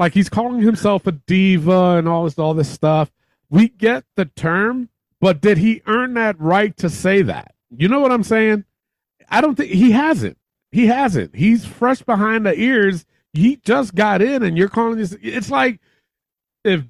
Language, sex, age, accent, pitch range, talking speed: English, male, 40-59, American, 155-210 Hz, 190 wpm